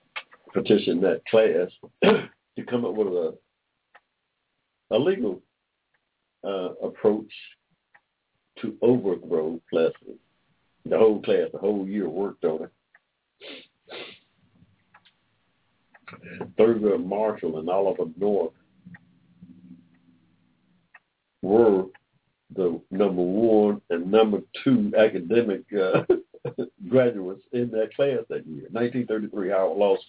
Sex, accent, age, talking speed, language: male, American, 60-79, 90 wpm, English